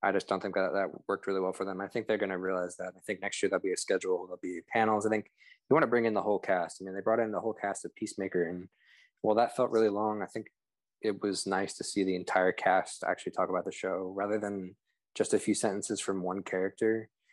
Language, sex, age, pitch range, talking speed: English, male, 20-39, 95-105 Hz, 275 wpm